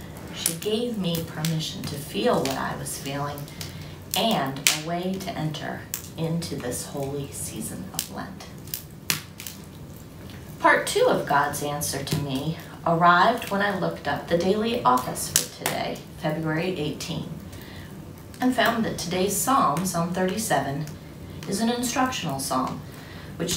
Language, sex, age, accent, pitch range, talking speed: English, female, 30-49, American, 155-210 Hz, 130 wpm